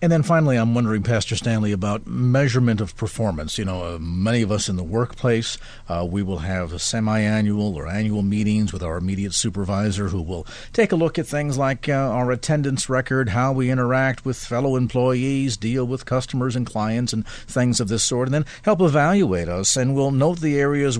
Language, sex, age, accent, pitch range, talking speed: English, male, 50-69, American, 110-145 Hz, 195 wpm